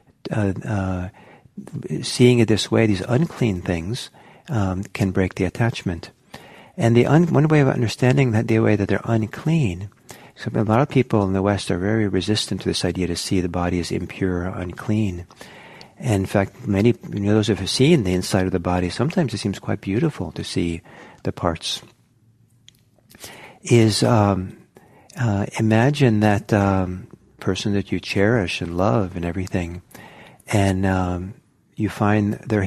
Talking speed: 170 wpm